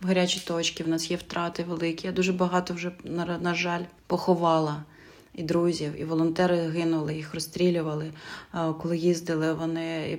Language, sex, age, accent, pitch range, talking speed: Ukrainian, female, 30-49, native, 160-175 Hz, 145 wpm